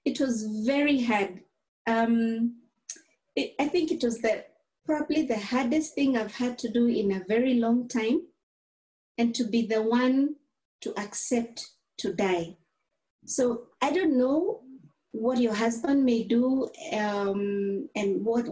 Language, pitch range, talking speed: English, 215-275 Hz, 140 wpm